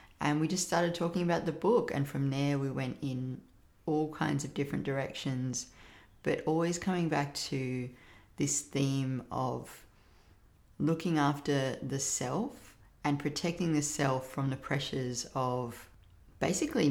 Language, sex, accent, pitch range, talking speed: English, female, Australian, 120-150 Hz, 140 wpm